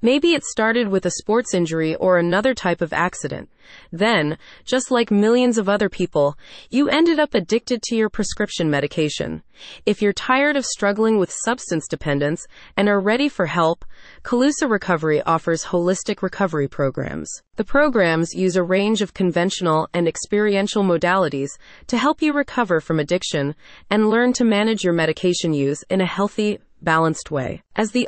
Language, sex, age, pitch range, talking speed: English, female, 30-49, 170-225 Hz, 160 wpm